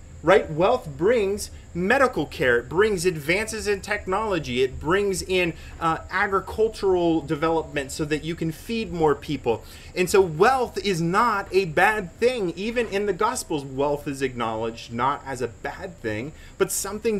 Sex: male